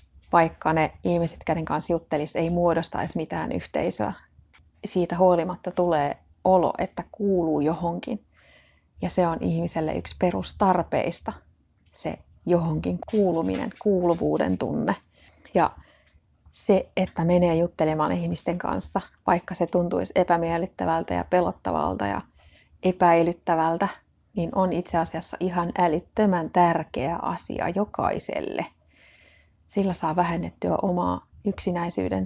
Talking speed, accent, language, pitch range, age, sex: 105 wpm, native, Finnish, 155-180 Hz, 30-49, female